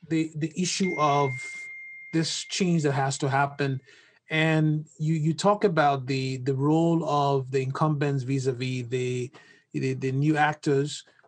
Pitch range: 140-170 Hz